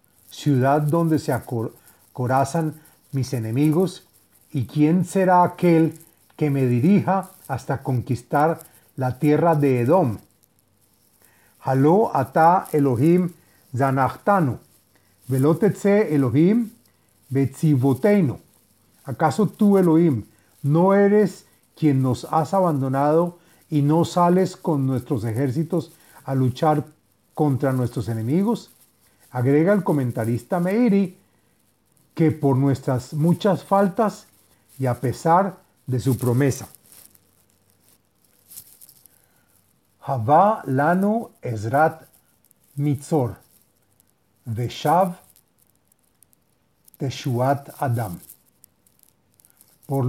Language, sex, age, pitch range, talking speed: Spanish, male, 40-59, 125-170 Hz, 70 wpm